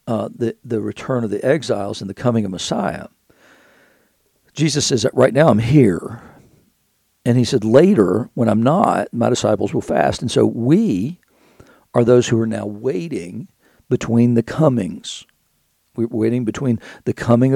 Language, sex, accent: English, male, American